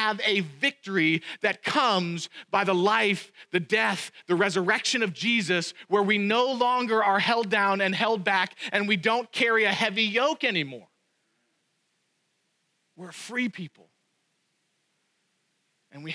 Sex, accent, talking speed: male, American, 135 wpm